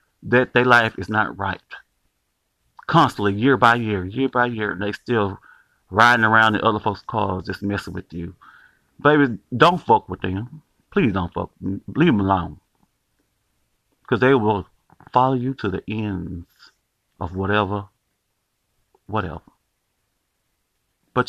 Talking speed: 140 wpm